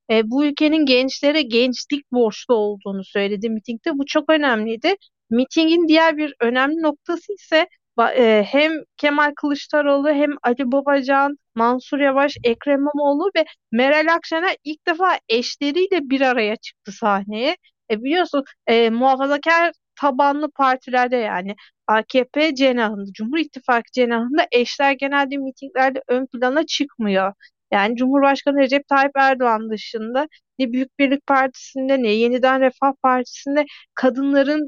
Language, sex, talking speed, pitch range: Turkish, female, 125 wpm, 240-295 Hz